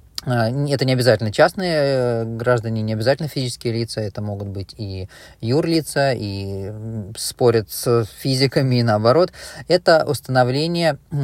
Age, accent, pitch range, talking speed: 20-39, native, 115-140 Hz, 120 wpm